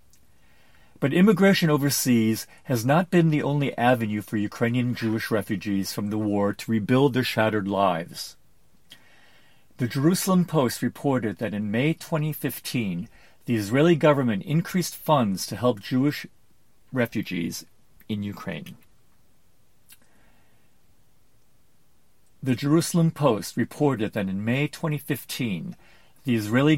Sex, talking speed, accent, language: male, 110 wpm, American, English